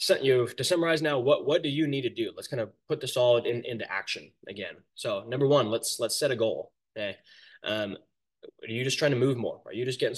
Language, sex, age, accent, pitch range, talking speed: English, male, 10-29, American, 110-130 Hz, 260 wpm